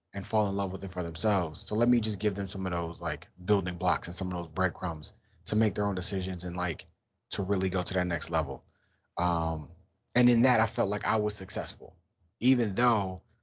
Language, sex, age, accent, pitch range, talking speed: English, male, 30-49, American, 90-110 Hz, 230 wpm